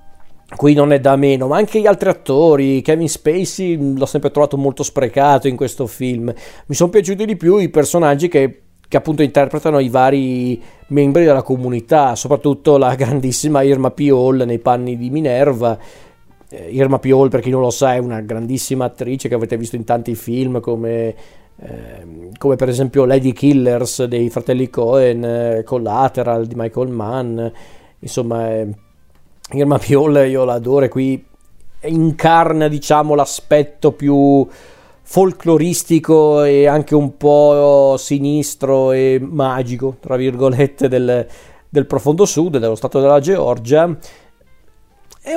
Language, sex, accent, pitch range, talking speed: Italian, male, native, 125-150 Hz, 145 wpm